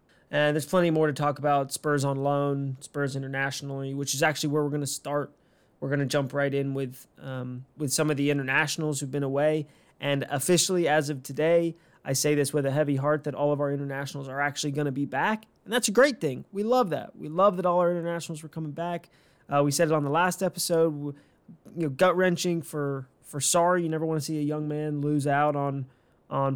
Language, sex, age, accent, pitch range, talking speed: English, male, 20-39, American, 140-155 Hz, 235 wpm